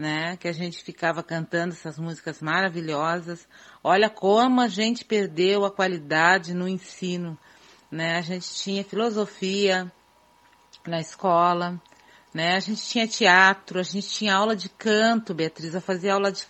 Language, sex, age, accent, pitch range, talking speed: Portuguese, female, 40-59, Brazilian, 170-200 Hz, 150 wpm